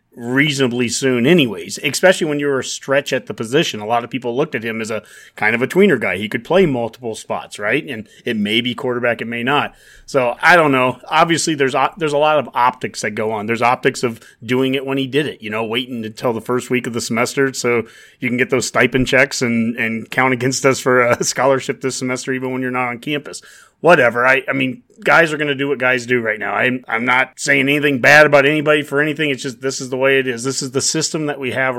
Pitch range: 120-140 Hz